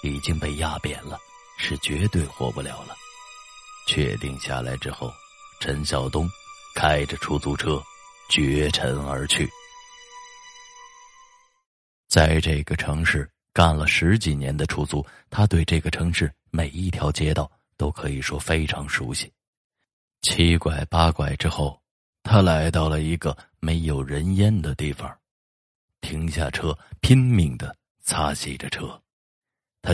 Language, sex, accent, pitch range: Chinese, male, native, 75-95 Hz